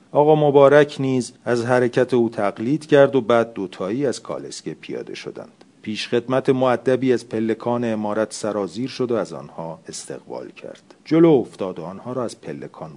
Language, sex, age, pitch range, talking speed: Persian, male, 40-59, 105-130 Hz, 160 wpm